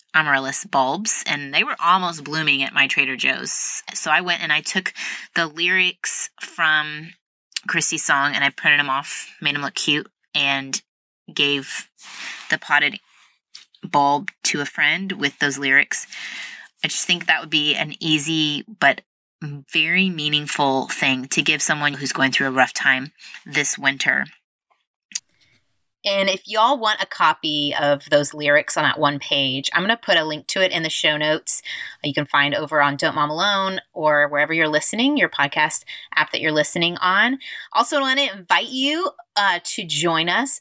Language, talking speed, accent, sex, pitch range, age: English, 170 wpm, American, female, 150-190 Hz, 20-39